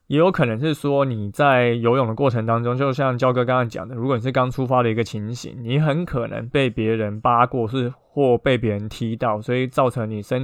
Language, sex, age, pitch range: Chinese, male, 20-39, 115-140 Hz